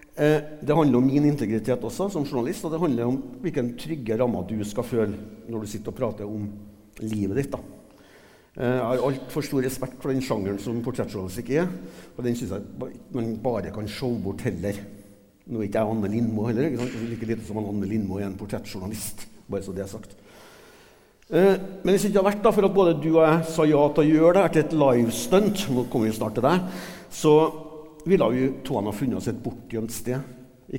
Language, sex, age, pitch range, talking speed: English, male, 60-79, 110-145 Hz, 220 wpm